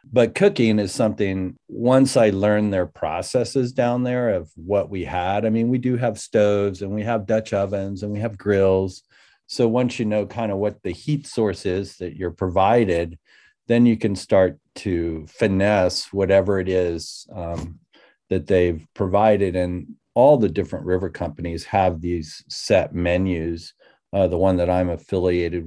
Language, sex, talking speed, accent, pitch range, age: English, male, 170 wpm, American, 90-110 Hz, 40-59